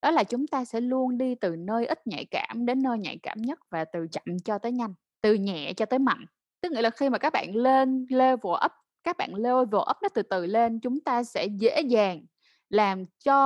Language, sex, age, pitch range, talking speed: Vietnamese, female, 10-29, 200-260 Hz, 235 wpm